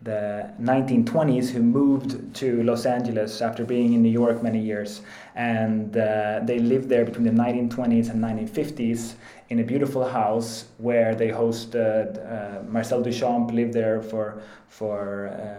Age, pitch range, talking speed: 20-39, 110-120 Hz, 150 wpm